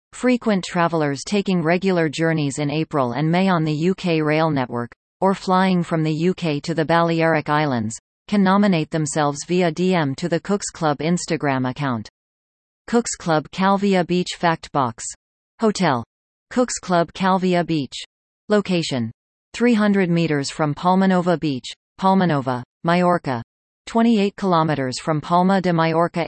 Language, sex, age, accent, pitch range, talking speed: English, female, 40-59, American, 145-185 Hz, 135 wpm